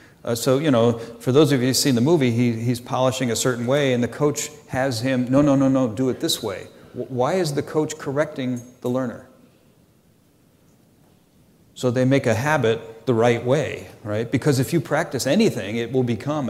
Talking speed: 205 wpm